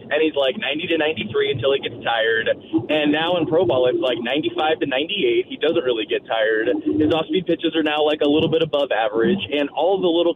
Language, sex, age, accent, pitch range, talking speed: English, male, 20-39, American, 130-170 Hz, 230 wpm